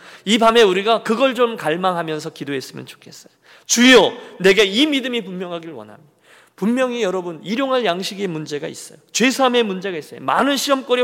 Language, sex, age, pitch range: Korean, male, 40-59, 130-215 Hz